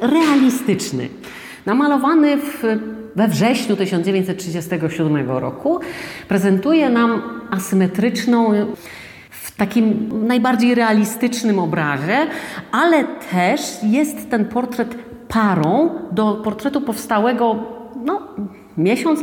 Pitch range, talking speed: 170-235 Hz, 75 wpm